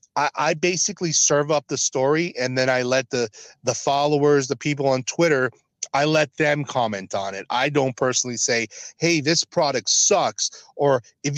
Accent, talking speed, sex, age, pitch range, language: American, 175 wpm, male, 40-59, 125-150 Hz, English